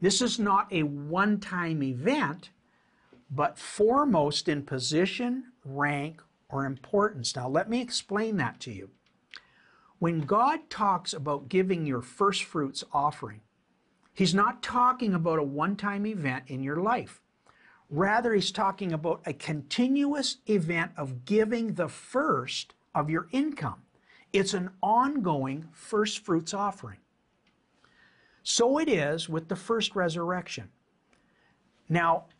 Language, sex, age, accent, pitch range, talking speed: English, male, 60-79, American, 160-235 Hz, 125 wpm